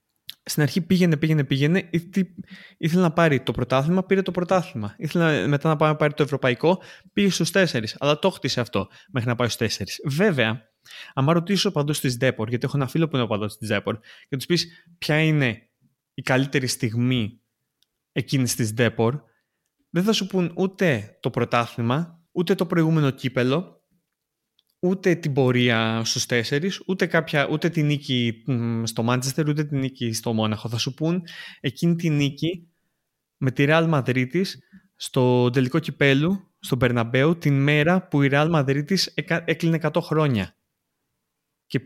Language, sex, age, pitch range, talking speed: Greek, male, 20-39, 125-170 Hz, 160 wpm